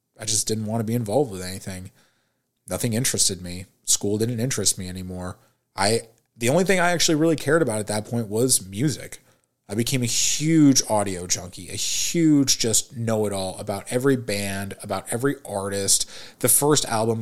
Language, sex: English, male